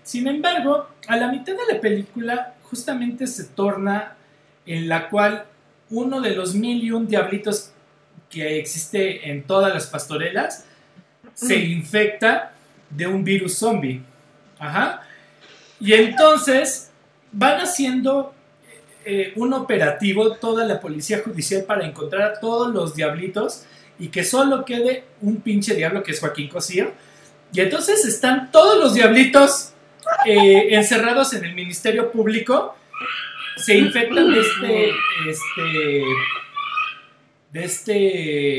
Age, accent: 40-59, Mexican